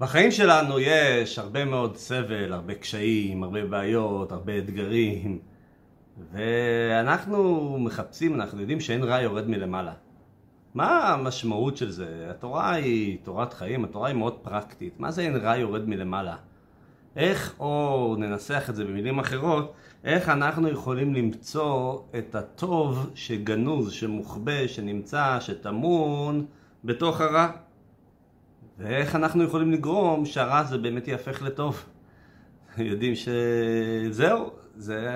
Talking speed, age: 120 wpm, 30-49